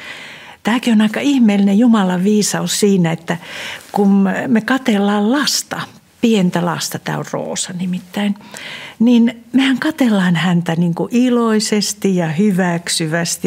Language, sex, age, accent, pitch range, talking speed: Finnish, female, 60-79, native, 170-225 Hz, 115 wpm